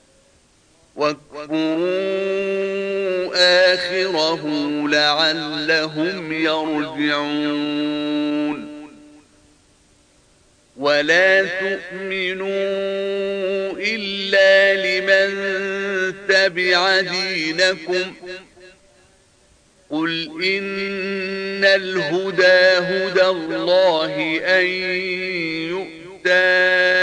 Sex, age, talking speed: male, 50-69, 40 wpm